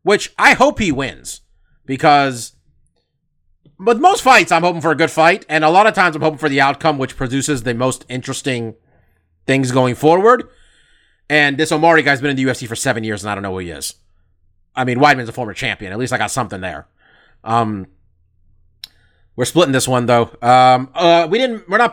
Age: 30-49